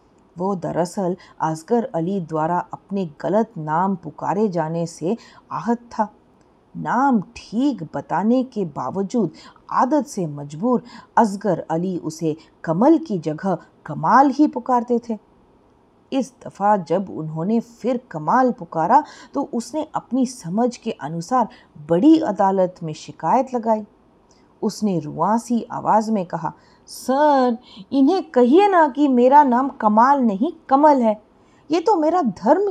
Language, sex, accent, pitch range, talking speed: English, female, Indian, 175-245 Hz, 130 wpm